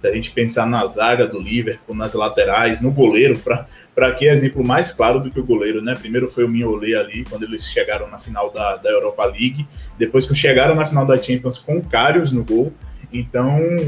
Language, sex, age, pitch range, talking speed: Portuguese, male, 20-39, 120-145 Hz, 210 wpm